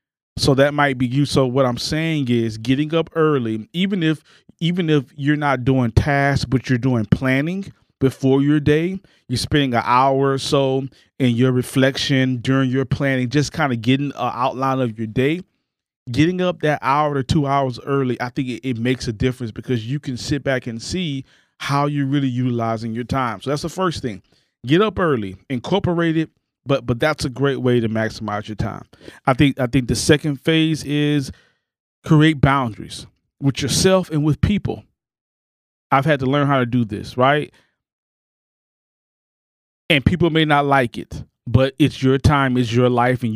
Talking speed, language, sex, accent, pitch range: 185 wpm, English, male, American, 125-150 Hz